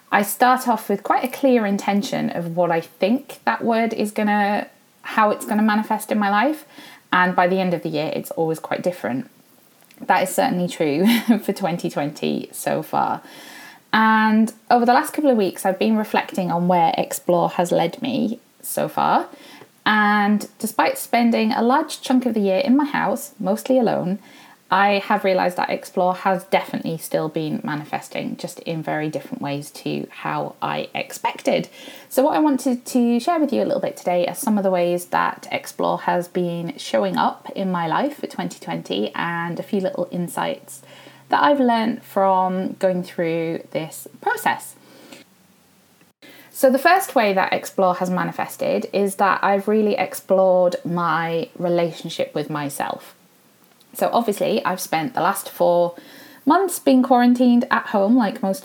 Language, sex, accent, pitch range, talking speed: English, female, British, 180-250 Hz, 170 wpm